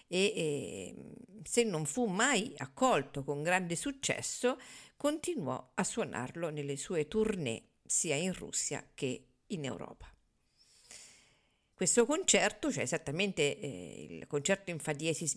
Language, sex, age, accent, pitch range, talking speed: Italian, female, 50-69, native, 150-205 Hz, 125 wpm